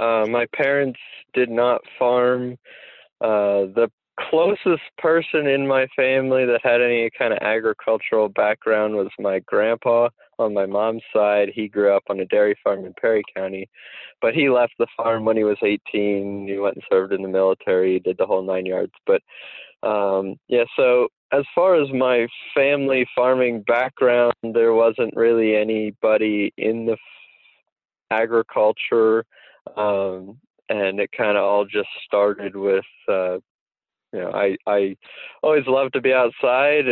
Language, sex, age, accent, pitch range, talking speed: English, male, 20-39, American, 100-125 Hz, 155 wpm